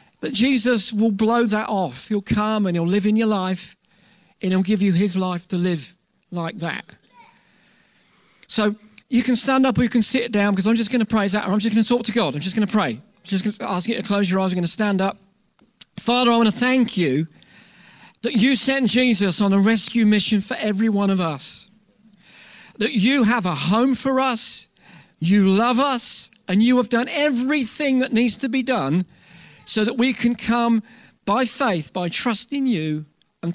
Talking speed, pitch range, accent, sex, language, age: 215 wpm, 190-235 Hz, British, male, English, 50-69